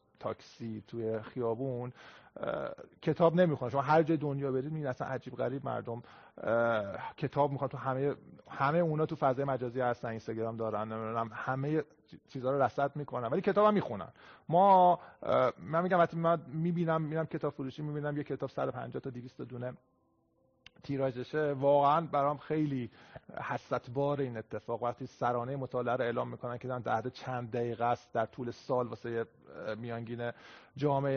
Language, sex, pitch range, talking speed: Persian, male, 125-150 Hz, 150 wpm